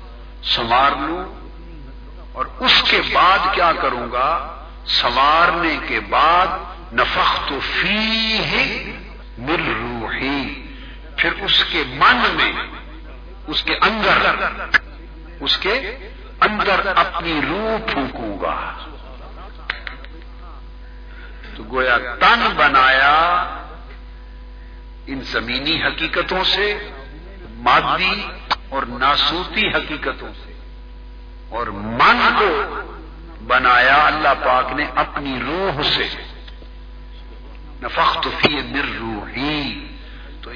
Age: 50-69